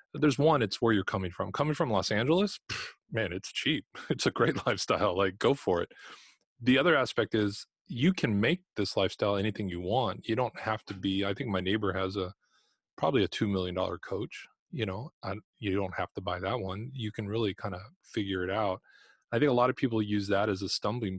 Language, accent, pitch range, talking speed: English, American, 95-120 Hz, 220 wpm